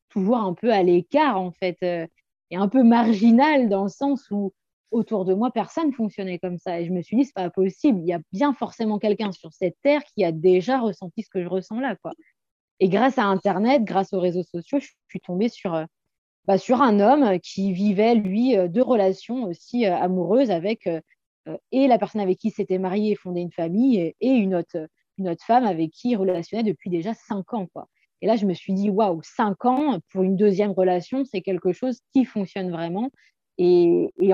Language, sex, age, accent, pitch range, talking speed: French, female, 20-39, French, 185-230 Hz, 220 wpm